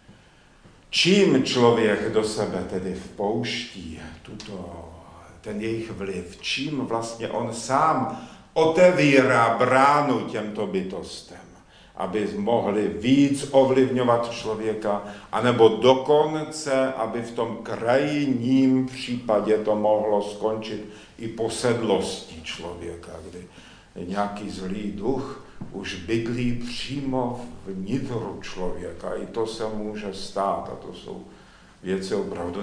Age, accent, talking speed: 50-69, native, 100 wpm